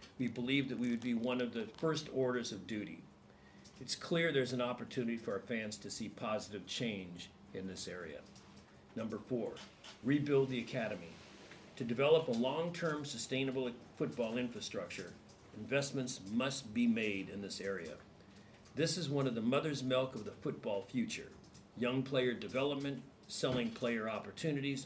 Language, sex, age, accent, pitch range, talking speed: English, male, 50-69, American, 115-140 Hz, 155 wpm